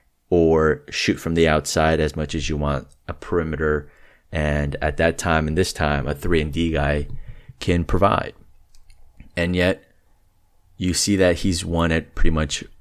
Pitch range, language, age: 75-85 Hz, English, 30-49